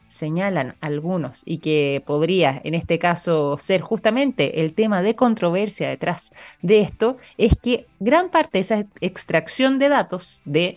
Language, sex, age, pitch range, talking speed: Spanish, female, 20-39, 170-240 Hz, 150 wpm